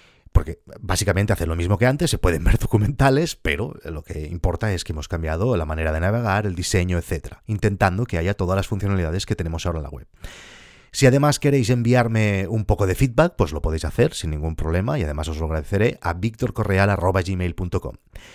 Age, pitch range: 30-49, 85-115 Hz